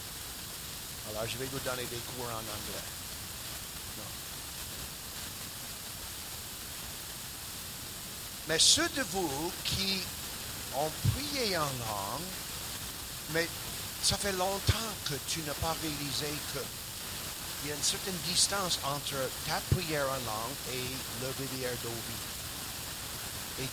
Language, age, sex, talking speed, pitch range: French, 50-69, male, 110 wpm, 110-140 Hz